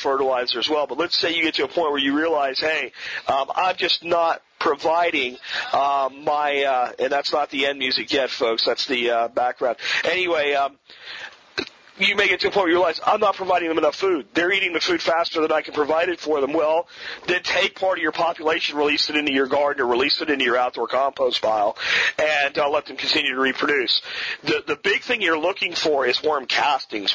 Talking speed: 225 wpm